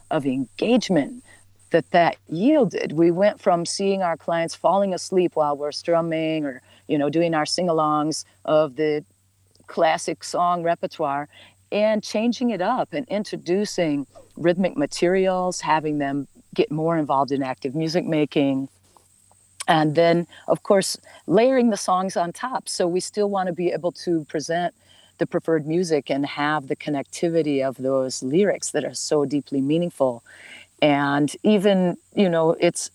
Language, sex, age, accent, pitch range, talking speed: English, female, 40-59, American, 150-195 Hz, 150 wpm